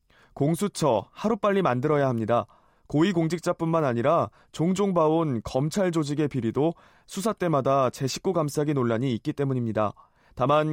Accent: native